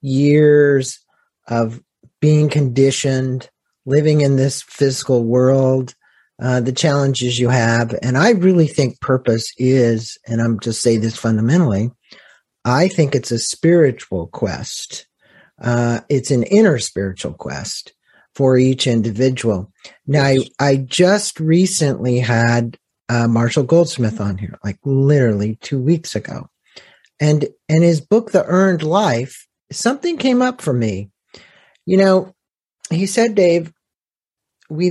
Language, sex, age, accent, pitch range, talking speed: English, male, 50-69, American, 115-160 Hz, 130 wpm